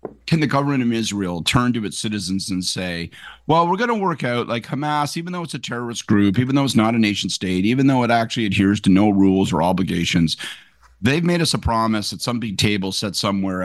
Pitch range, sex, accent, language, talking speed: 95-130 Hz, male, American, English, 235 wpm